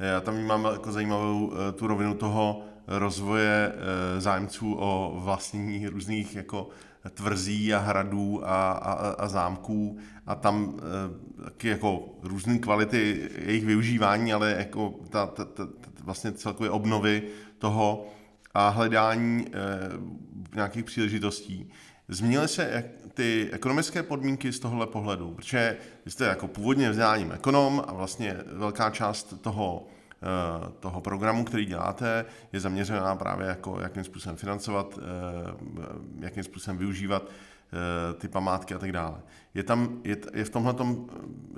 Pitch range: 95-110 Hz